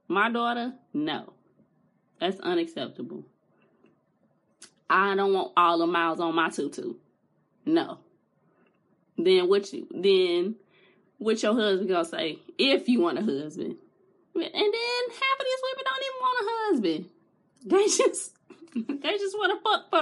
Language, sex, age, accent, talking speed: English, female, 20-39, American, 140 wpm